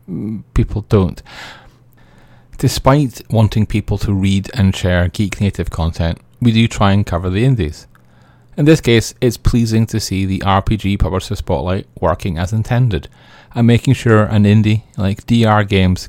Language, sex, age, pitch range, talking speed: English, male, 30-49, 95-120 Hz, 155 wpm